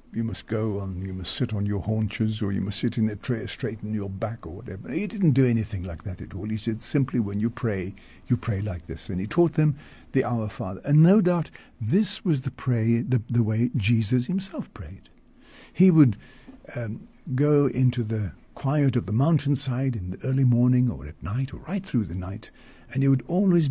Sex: male